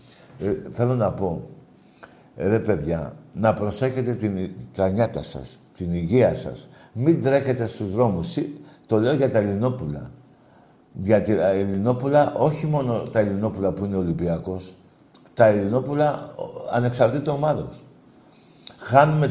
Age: 60-79